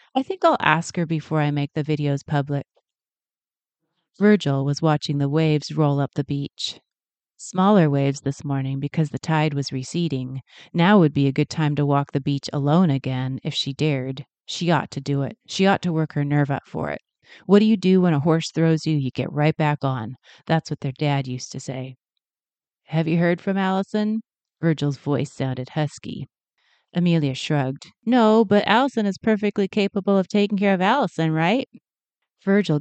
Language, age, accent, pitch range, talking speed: English, 30-49, American, 140-185 Hz, 190 wpm